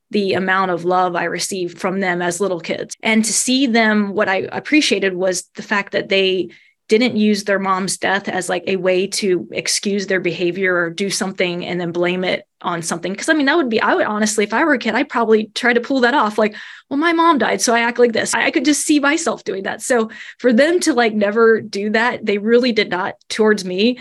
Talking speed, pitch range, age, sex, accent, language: 245 wpm, 190-225 Hz, 20-39, female, American, English